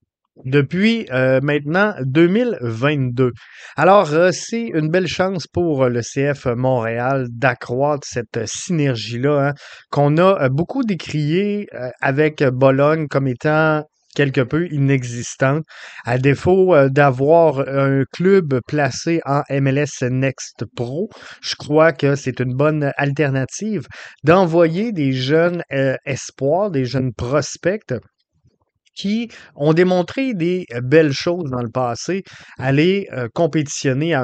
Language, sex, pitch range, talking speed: French, male, 130-165 Hz, 115 wpm